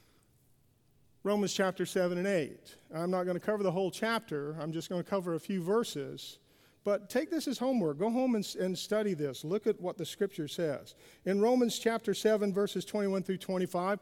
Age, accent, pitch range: 50-69, American, 160-220 Hz